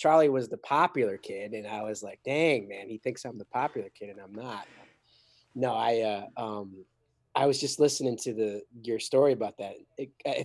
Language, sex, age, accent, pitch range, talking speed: English, male, 30-49, American, 105-130 Hz, 200 wpm